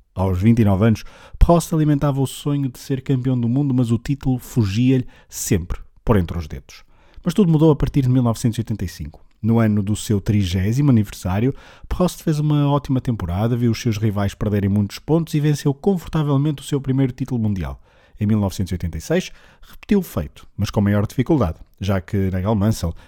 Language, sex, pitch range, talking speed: Portuguese, male, 100-145 Hz, 175 wpm